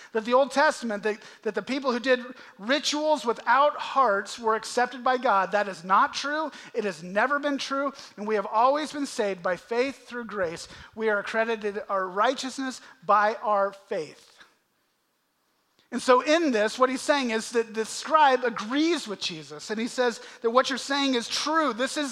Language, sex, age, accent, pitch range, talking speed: English, male, 40-59, American, 185-260 Hz, 185 wpm